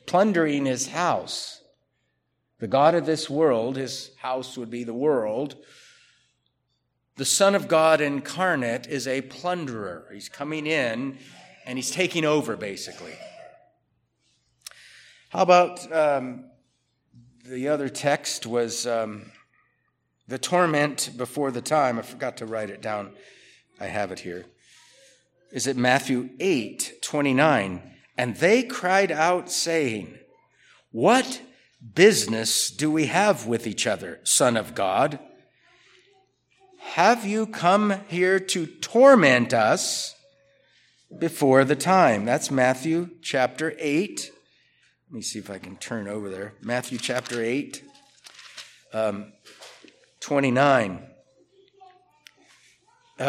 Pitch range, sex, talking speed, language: 120-180 Hz, male, 115 wpm, English